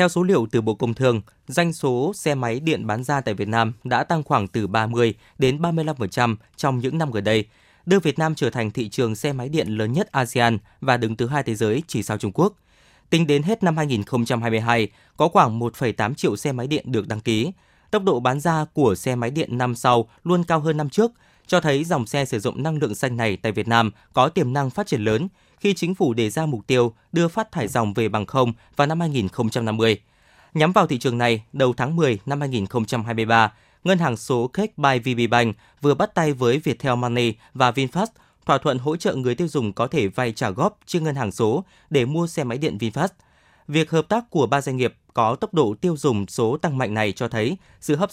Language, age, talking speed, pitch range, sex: Vietnamese, 20-39, 230 wpm, 115-155 Hz, male